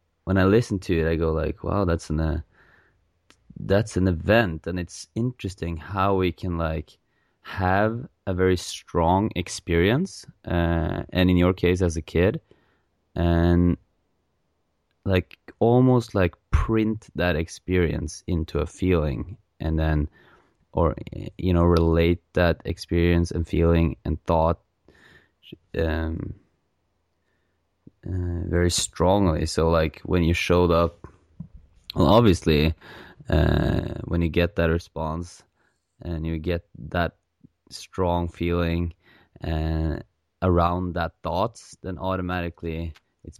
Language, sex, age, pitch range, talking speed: English, male, 20-39, 80-95 Hz, 120 wpm